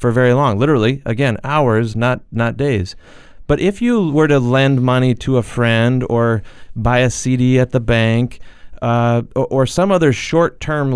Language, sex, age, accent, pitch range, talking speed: English, male, 30-49, American, 115-135 Hz, 175 wpm